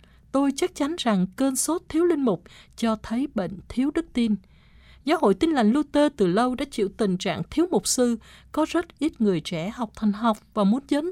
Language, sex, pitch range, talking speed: Vietnamese, female, 200-285 Hz, 215 wpm